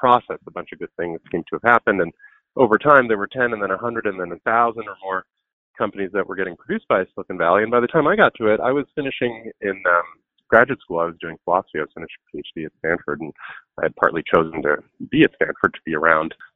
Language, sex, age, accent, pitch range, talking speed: English, male, 30-49, American, 95-145 Hz, 250 wpm